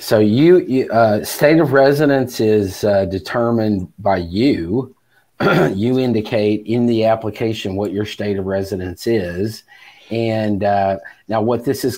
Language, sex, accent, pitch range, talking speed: English, male, American, 95-115 Hz, 145 wpm